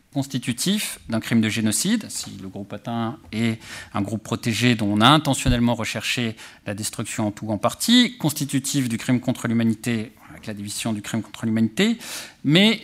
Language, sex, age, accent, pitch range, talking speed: French, male, 40-59, French, 115-160 Hz, 180 wpm